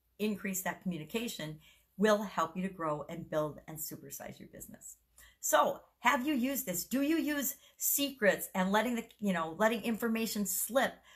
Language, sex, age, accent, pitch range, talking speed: English, female, 50-69, American, 175-225 Hz, 165 wpm